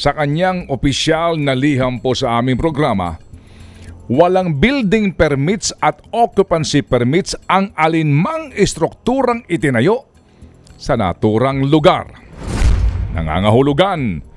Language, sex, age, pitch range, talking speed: Filipino, male, 50-69, 95-160 Hz, 95 wpm